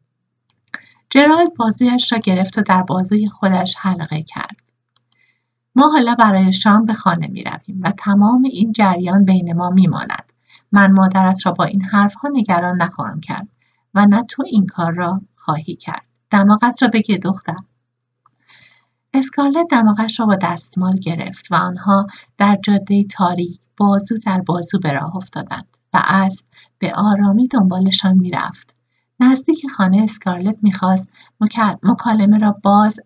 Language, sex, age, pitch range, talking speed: Persian, female, 50-69, 185-210 Hz, 140 wpm